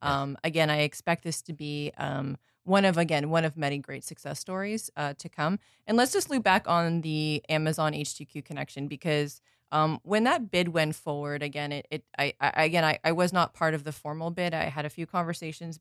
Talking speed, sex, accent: 215 wpm, female, American